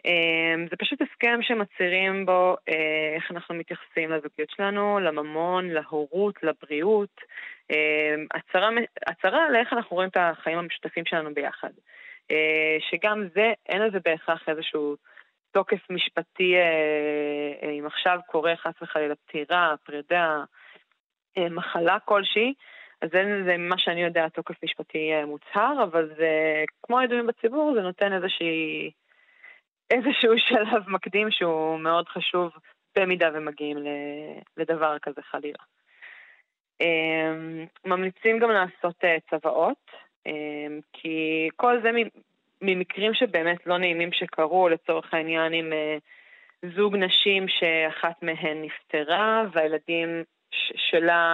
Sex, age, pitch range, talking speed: female, 20-39, 155-190 Hz, 110 wpm